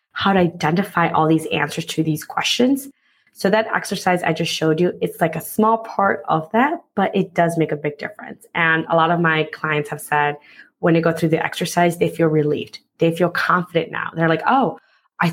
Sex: female